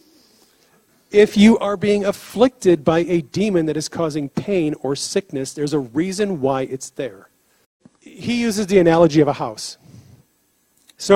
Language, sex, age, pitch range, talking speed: English, male, 40-59, 155-215 Hz, 150 wpm